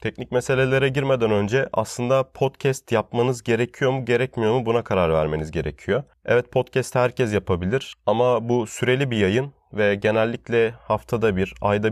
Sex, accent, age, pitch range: male, native, 30-49, 100-125 Hz